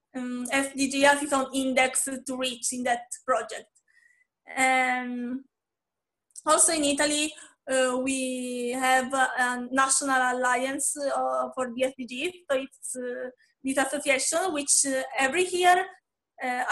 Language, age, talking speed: English, 20-39, 125 wpm